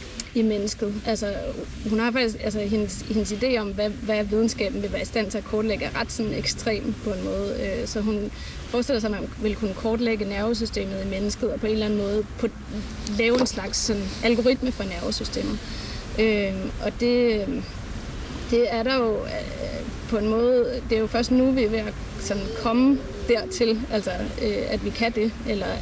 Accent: native